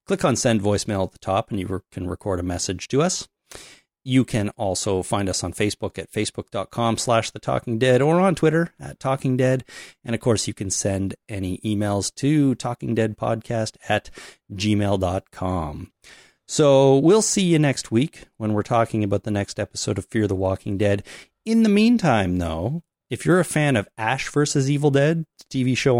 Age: 30-49